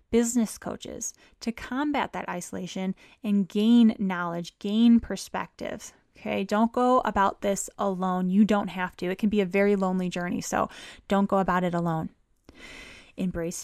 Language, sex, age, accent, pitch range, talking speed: English, female, 20-39, American, 190-220 Hz, 150 wpm